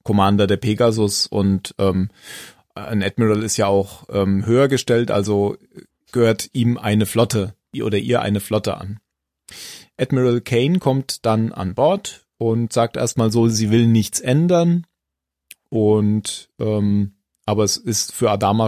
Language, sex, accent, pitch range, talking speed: German, male, German, 105-120 Hz, 140 wpm